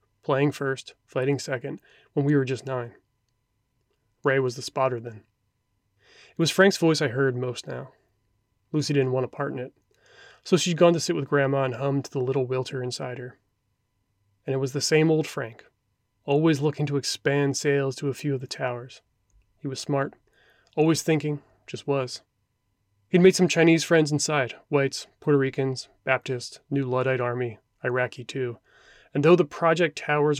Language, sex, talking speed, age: English, male, 175 wpm, 30-49